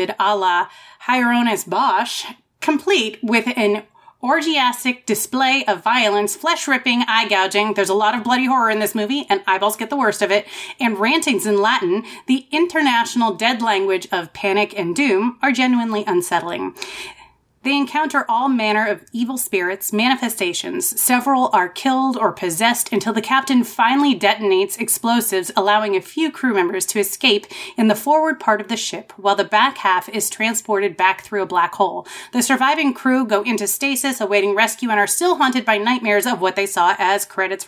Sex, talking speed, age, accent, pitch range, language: female, 170 wpm, 30-49, American, 205-265 Hz, English